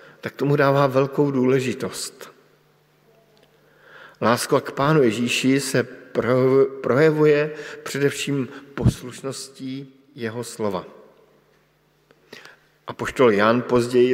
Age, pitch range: 50-69, 115-140 Hz